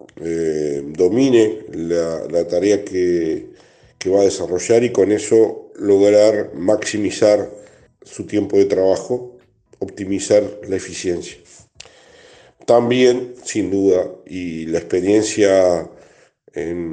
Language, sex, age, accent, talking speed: Spanish, male, 50-69, Argentinian, 105 wpm